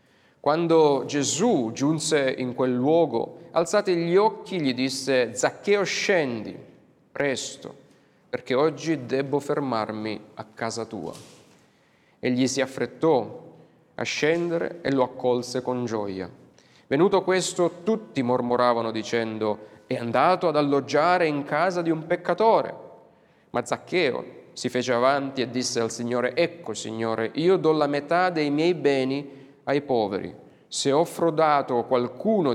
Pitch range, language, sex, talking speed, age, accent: 120-155 Hz, Italian, male, 125 wpm, 30-49, native